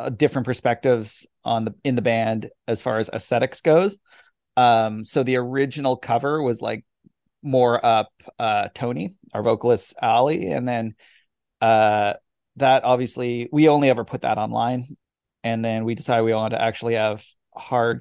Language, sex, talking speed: English, male, 155 wpm